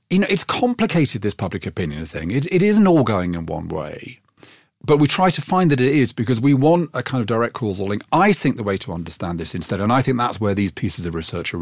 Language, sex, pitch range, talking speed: English, male, 100-145 Hz, 265 wpm